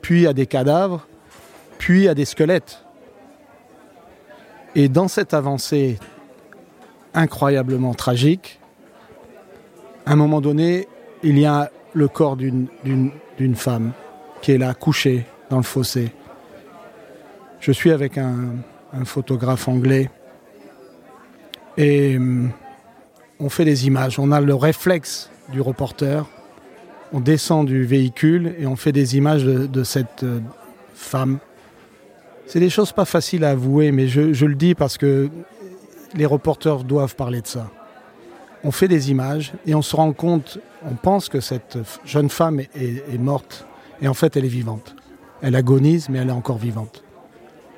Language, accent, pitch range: French, French, 130-150 Hz